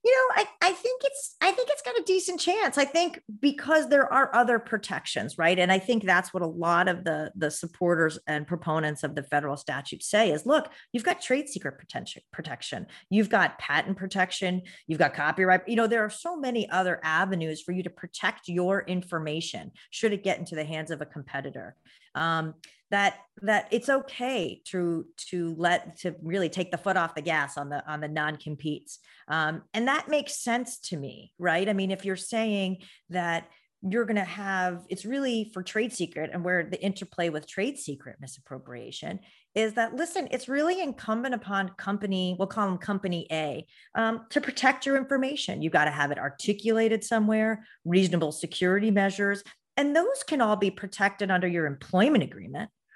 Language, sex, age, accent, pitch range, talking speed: English, female, 40-59, American, 165-230 Hz, 185 wpm